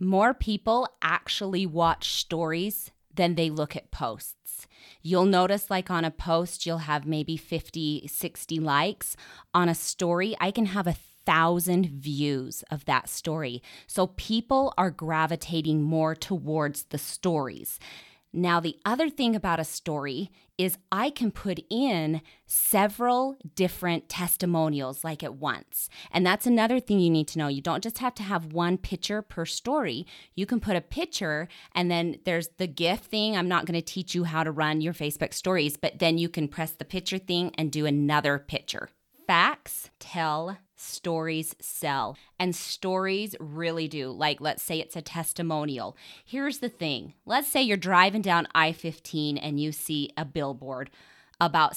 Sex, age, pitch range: female, 20-39, 160-195 Hz